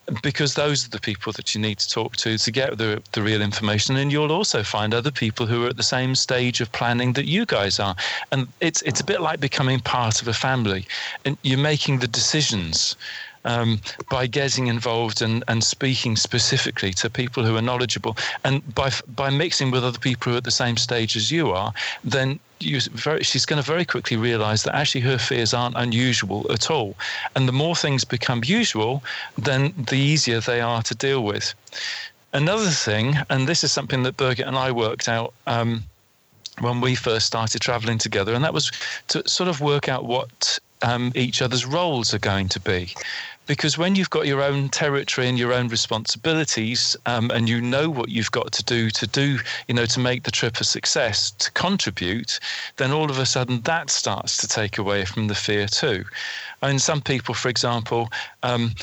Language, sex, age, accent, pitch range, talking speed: English, male, 40-59, British, 115-140 Hz, 205 wpm